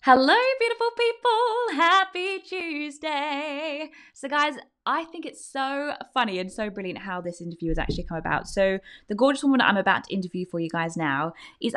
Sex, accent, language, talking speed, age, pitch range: female, British, English, 180 wpm, 20-39, 180-255 Hz